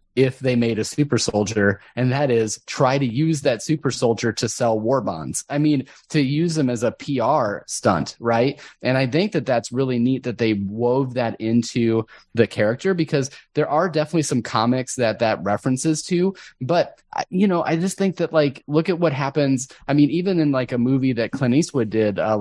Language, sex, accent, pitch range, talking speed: English, male, American, 115-145 Hz, 205 wpm